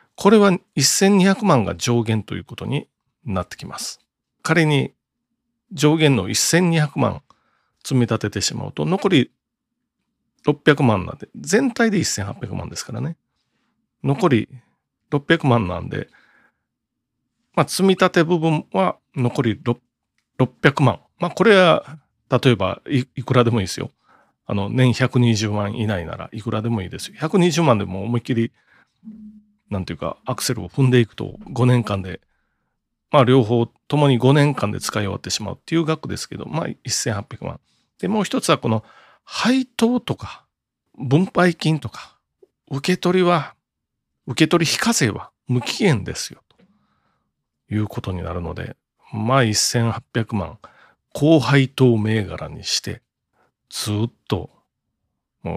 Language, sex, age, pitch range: Japanese, male, 40-59, 110-160 Hz